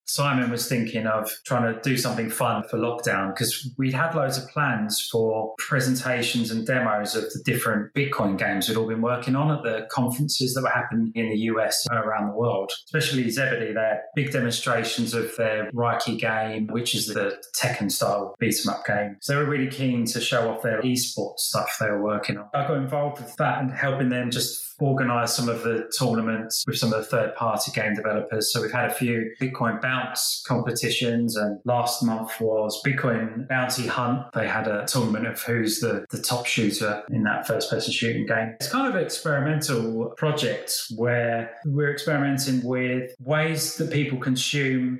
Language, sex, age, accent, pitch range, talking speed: English, male, 20-39, British, 115-130 Hz, 185 wpm